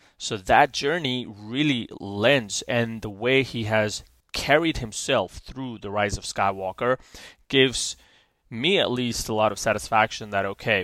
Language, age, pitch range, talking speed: English, 30-49, 100-125 Hz, 150 wpm